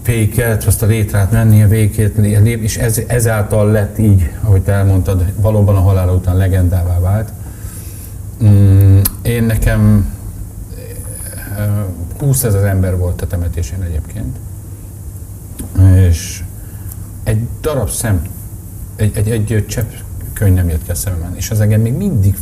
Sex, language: male, Hungarian